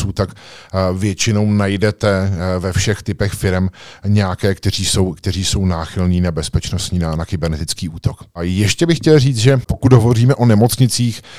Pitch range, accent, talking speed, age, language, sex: 95-110 Hz, native, 155 wpm, 50-69, Czech, male